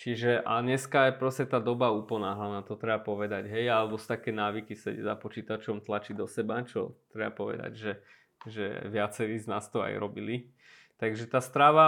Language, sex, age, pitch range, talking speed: Slovak, male, 20-39, 110-130 Hz, 185 wpm